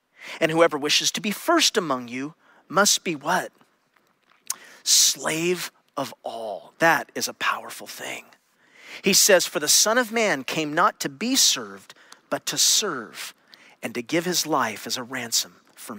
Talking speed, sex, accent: 160 wpm, male, American